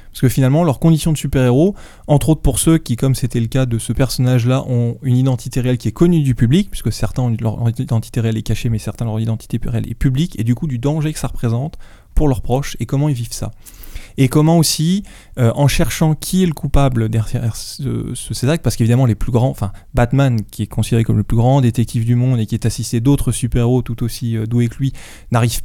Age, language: 20-39, French